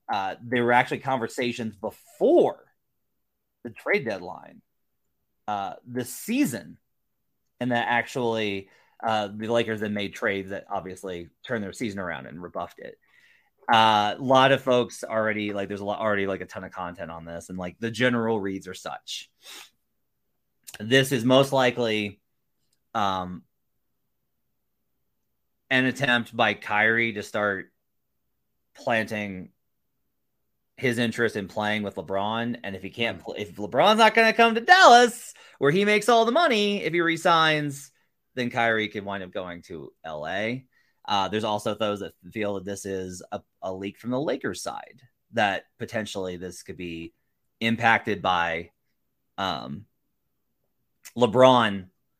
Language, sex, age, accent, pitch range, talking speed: English, male, 30-49, American, 95-125 Hz, 145 wpm